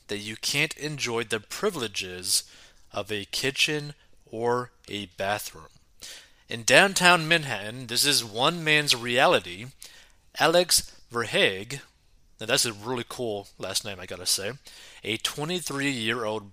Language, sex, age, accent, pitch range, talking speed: English, male, 30-49, American, 110-150 Hz, 125 wpm